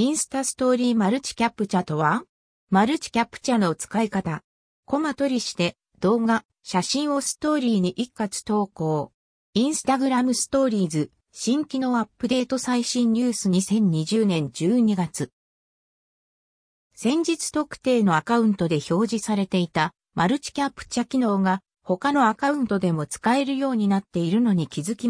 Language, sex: Japanese, female